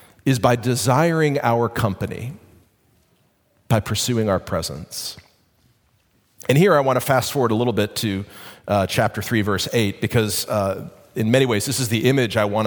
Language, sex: English, male